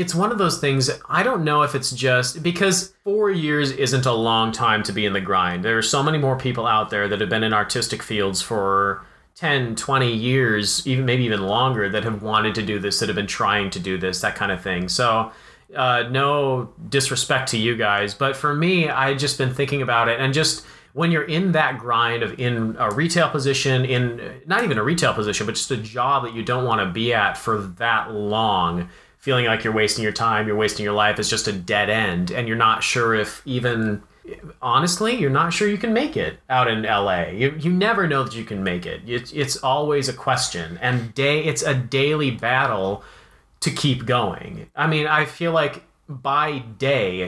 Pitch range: 110-145 Hz